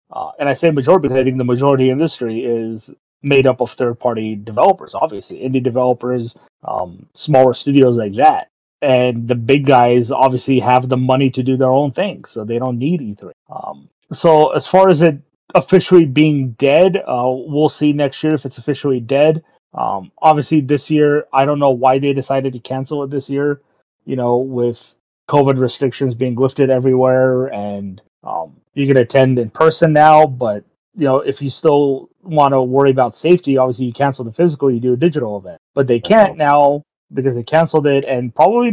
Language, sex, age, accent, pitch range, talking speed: English, male, 30-49, American, 130-155 Hz, 190 wpm